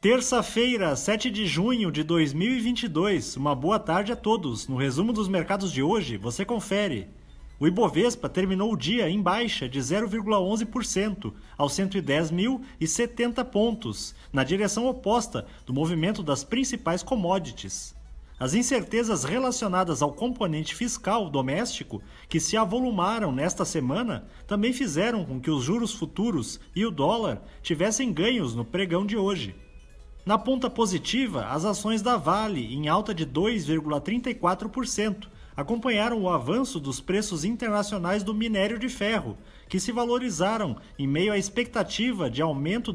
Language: Portuguese